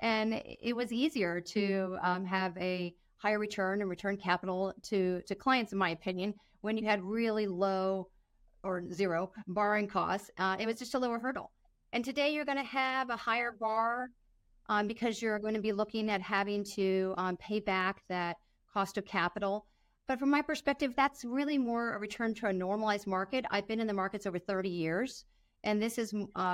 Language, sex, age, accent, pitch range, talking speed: English, female, 40-59, American, 180-225 Hz, 190 wpm